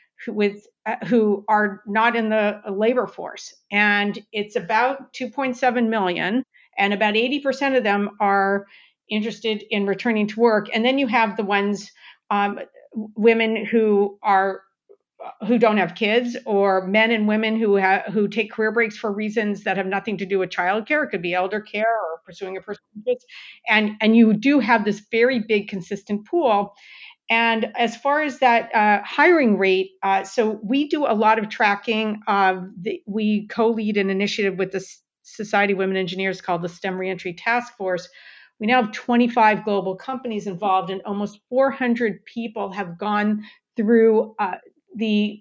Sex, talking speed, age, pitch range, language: female, 170 wpm, 50-69, 200-230 Hz, English